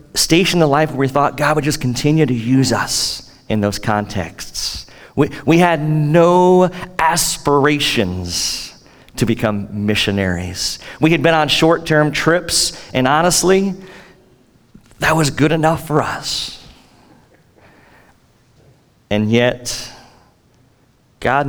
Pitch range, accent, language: 110-140 Hz, American, English